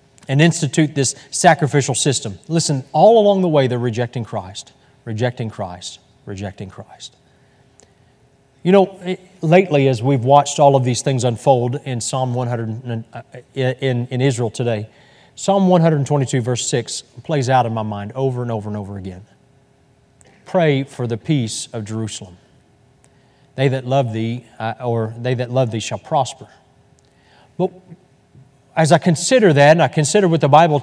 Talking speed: 155 wpm